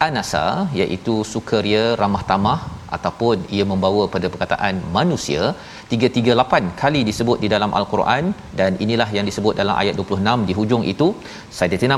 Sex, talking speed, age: male, 140 wpm, 40-59